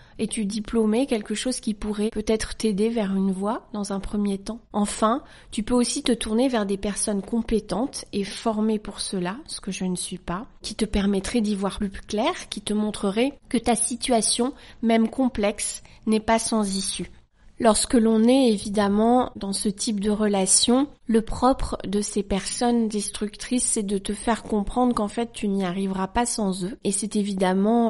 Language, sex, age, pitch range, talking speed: French, female, 30-49, 200-230 Hz, 185 wpm